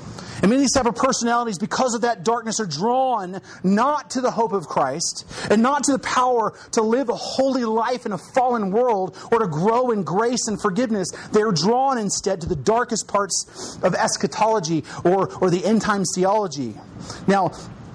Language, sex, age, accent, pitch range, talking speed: English, male, 30-49, American, 185-230 Hz, 180 wpm